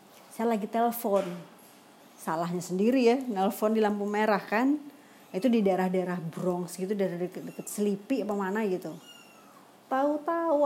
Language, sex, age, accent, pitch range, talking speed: Indonesian, female, 30-49, native, 200-275 Hz, 130 wpm